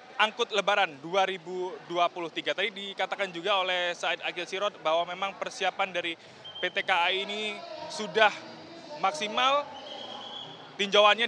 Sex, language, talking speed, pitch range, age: male, Indonesian, 105 wpm, 190-225 Hz, 20-39